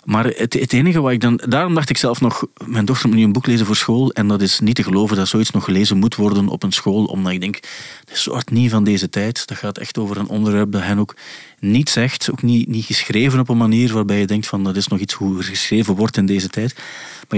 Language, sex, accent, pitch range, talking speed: Dutch, male, Dutch, 100-125 Hz, 275 wpm